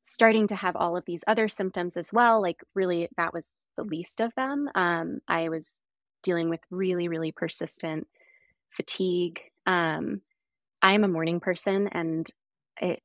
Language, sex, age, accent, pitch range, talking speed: English, female, 20-39, American, 165-195 Hz, 155 wpm